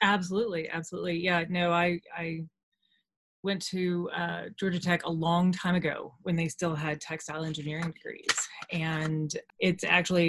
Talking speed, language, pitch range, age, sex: 145 wpm, English, 160-185 Hz, 20-39, female